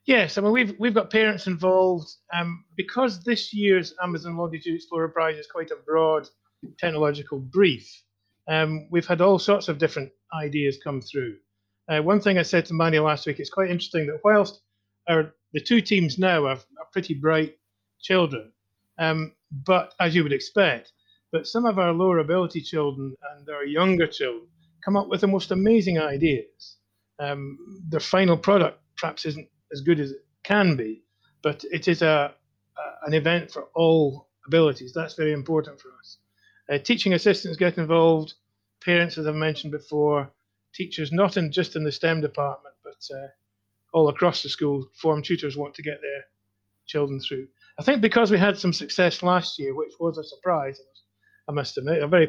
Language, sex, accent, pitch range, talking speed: English, male, British, 140-180 Hz, 180 wpm